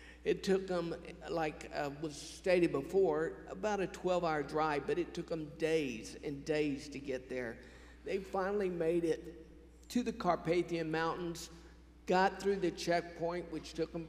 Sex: male